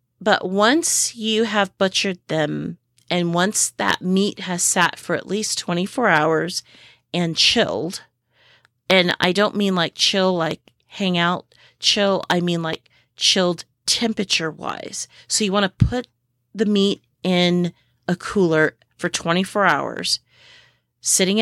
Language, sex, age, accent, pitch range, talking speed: English, female, 30-49, American, 155-200 Hz, 135 wpm